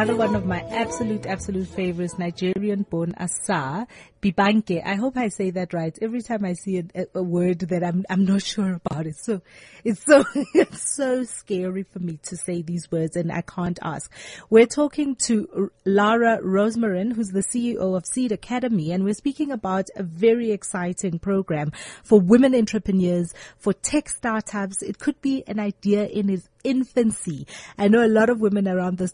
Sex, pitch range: female, 185-230 Hz